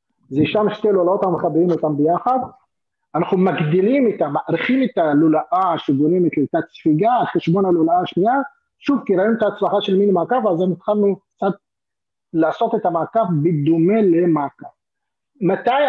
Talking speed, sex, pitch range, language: 145 wpm, male, 155-210 Hz, Hebrew